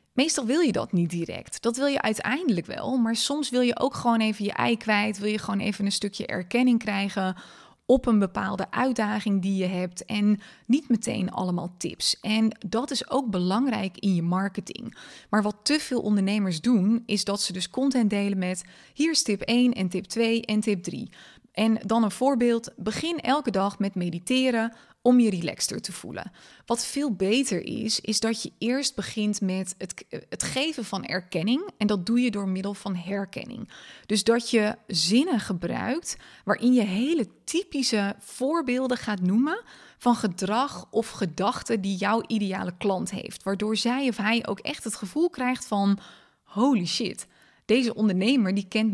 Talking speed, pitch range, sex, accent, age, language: 180 wpm, 195-245 Hz, female, Dutch, 20-39, Dutch